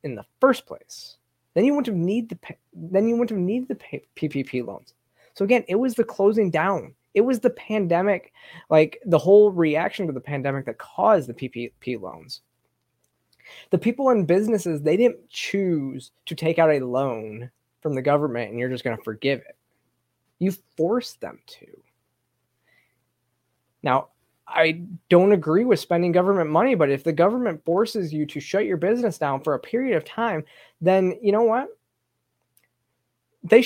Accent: American